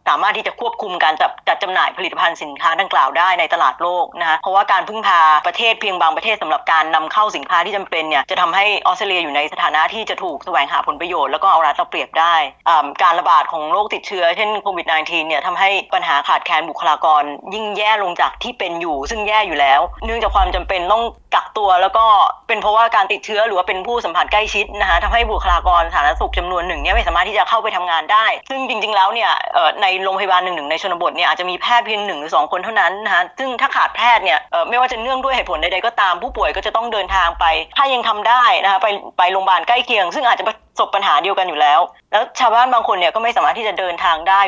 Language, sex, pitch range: Thai, female, 175-220 Hz